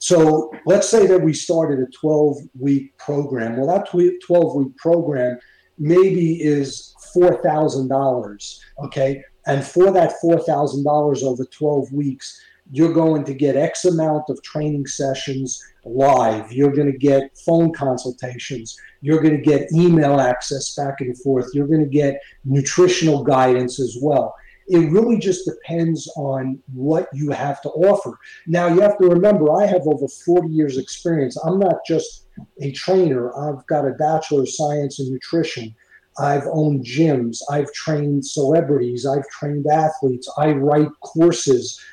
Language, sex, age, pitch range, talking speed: English, male, 50-69, 135-165 Hz, 145 wpm